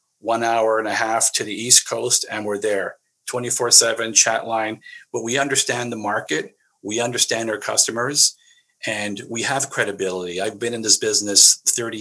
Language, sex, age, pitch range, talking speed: English, male, 50-69, 105-145 Hz, 170 wpm